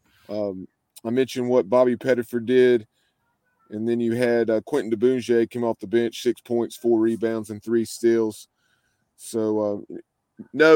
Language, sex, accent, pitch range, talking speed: English, male, American, 115-135 Hz, 155 wpm